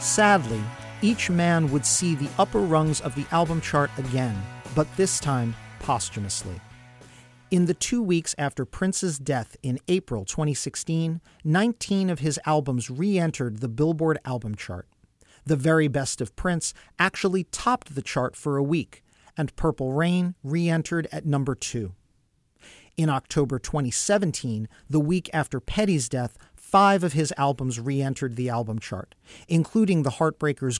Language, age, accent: English, 40-59, American